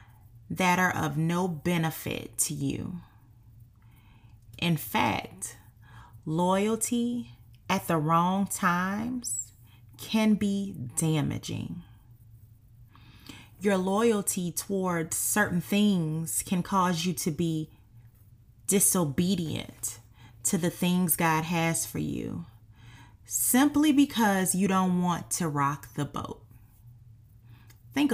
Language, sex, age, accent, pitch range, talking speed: English, female, 30-49, American, 115-185 Hz, 95 wpm